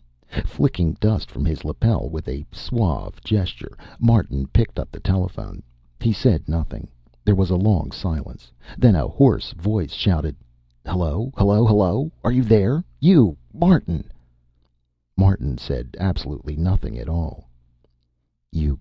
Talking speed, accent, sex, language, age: 135 wpm, American, male, English, 50-69